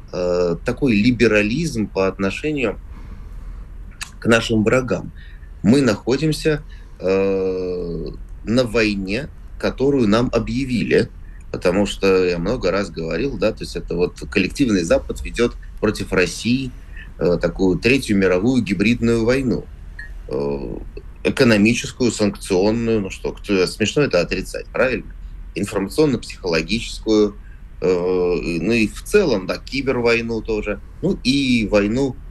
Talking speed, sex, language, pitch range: 100 wpm, male, Russian, 90-115 Hz